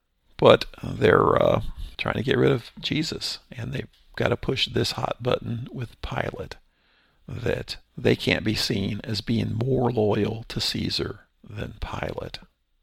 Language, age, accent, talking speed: English, 50-69, American, 150 wpm